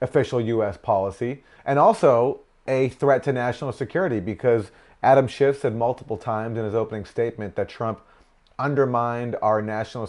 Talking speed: 150 wpm